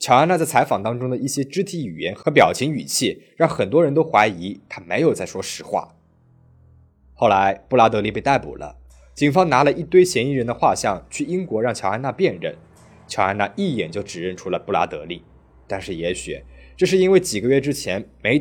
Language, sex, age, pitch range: Chinese, male, 20-39, 95-145 Hz